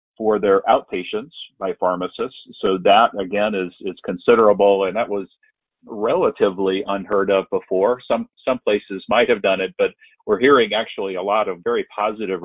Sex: male